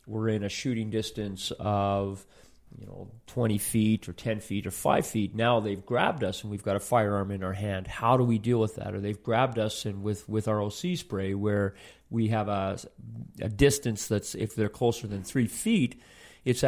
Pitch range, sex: 100-120 Hz, male